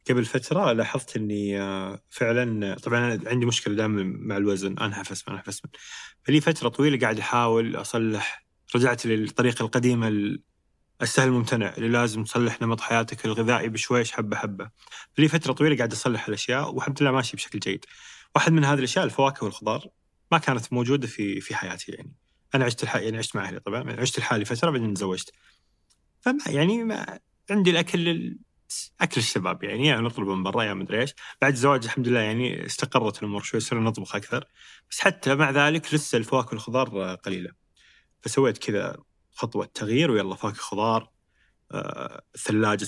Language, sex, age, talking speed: Arabic, male, 30-49, 160 wpm